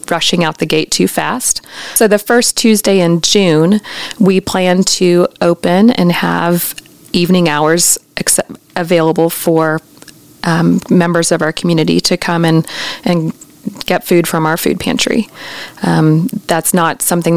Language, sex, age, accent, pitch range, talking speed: English, female, 40-59, American, 160-195 Hz, 145 wpm